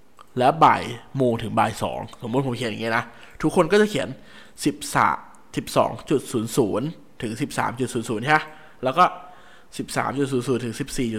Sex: male